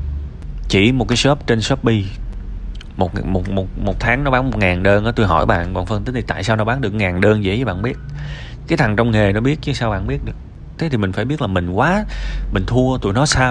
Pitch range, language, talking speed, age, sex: 90-120 Hz, Vietnamese, 265 wpm, 20-39, male